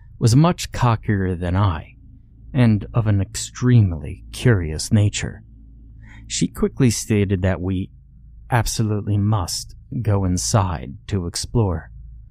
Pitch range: 95-120 Hz